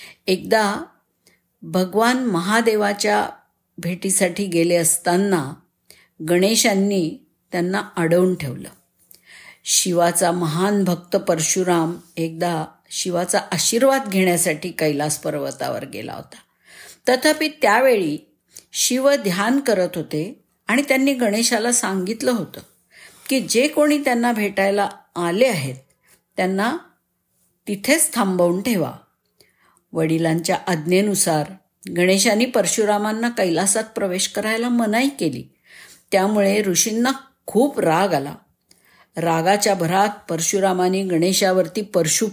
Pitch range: 175-235 Hz